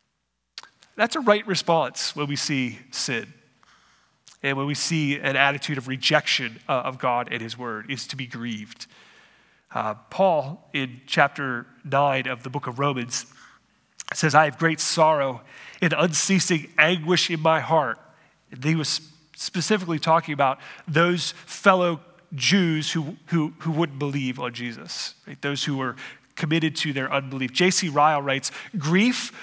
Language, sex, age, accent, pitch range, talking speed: English, male, 30-49, American, 140-175 Hz, 145 wpm